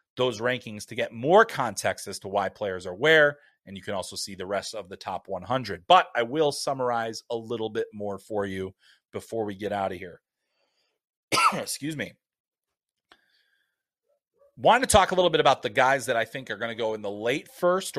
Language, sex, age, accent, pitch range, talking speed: English, male, 30-49, American, 115-155 Hz, 205 wpm